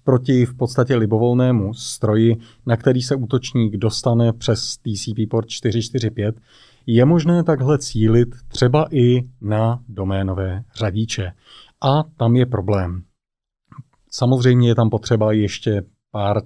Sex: male